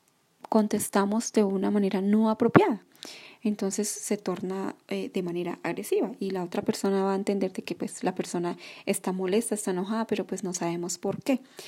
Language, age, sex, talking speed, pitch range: Spanish, 20-39, female, 165 wpm, 185-215 Hz